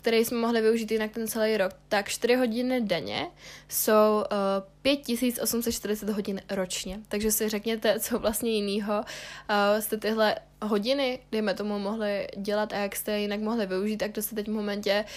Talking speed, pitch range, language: 165 wpm, 200-215 Hz, Czech